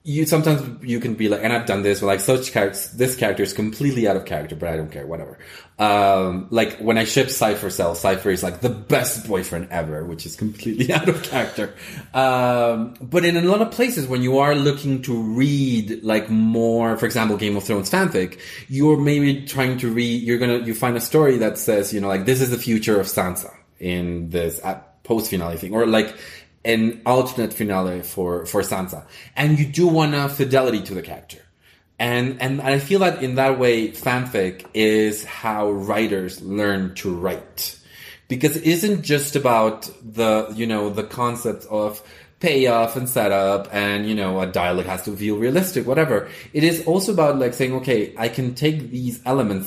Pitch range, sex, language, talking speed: 100-130 Hz, male, English, 195 wpm